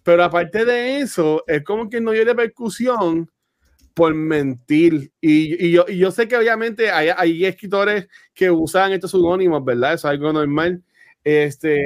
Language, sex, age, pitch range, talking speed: Spanish, male, 30-49, 155-205 Hz, 165 wpm